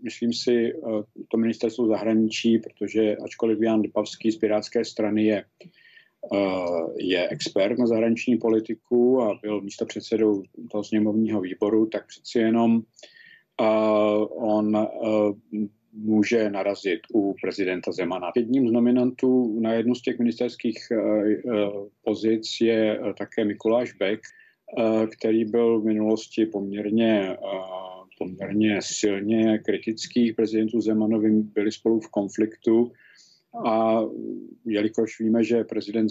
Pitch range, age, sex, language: 105-115 Hz, 50-69, male, Czech